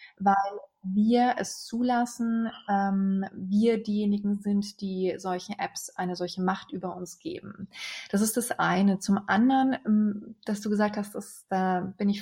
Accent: German